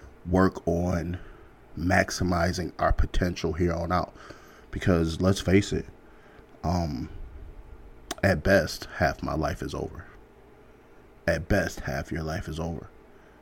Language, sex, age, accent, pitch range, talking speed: English, male, 30-49, American, 85-95 Hz, 120 wpm